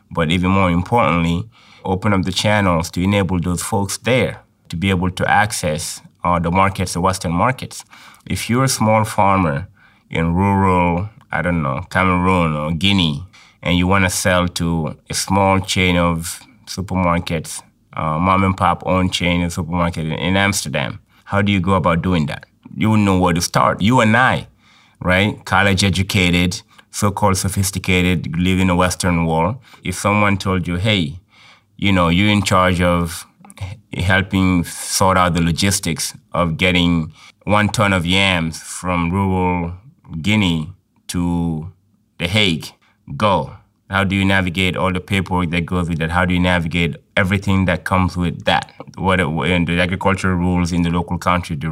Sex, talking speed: male, 165 wpm